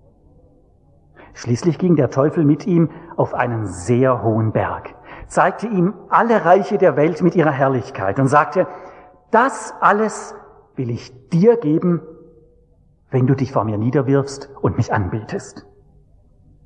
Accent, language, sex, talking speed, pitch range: German, English, male, 135 wpm, 115-155 Hz